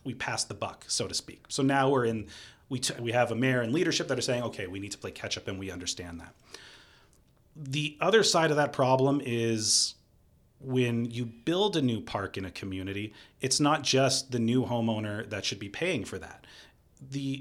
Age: 30-49